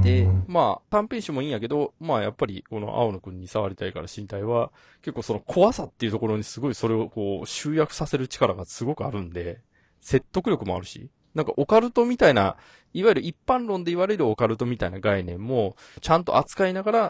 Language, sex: Japanese, male